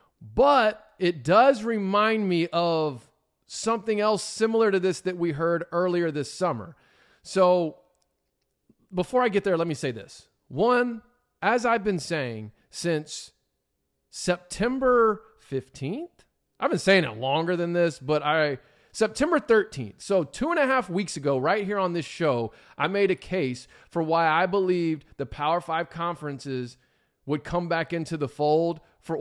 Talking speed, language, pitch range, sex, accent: 155 wpm, English, 150-195 Hz, male, American